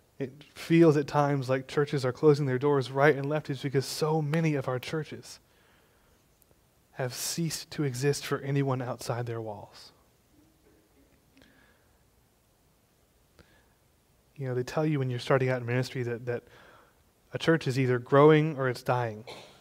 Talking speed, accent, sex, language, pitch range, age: 155 wpm, American, male, English, 120-145 Hz, 20-39